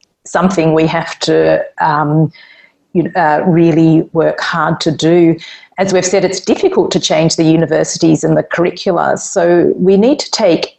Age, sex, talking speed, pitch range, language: 40-59, female, 160 wpm, 160-190 Hz, English